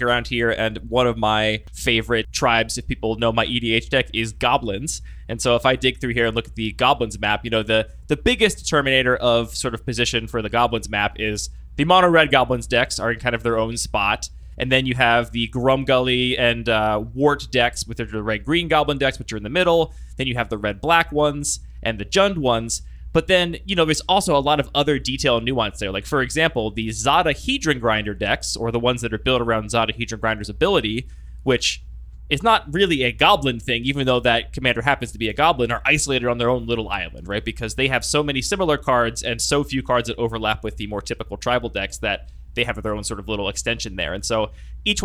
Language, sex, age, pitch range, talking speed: English, male, 20-39, 110-135 Hz, 235 wpm